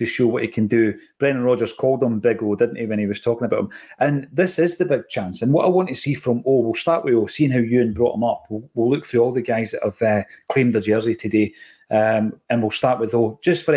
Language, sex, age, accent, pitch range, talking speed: English, male, 40-59, British, 115-135 Hz, 290 wpm